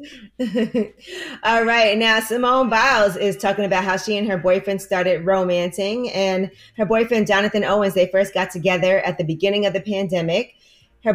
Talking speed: 165 wpm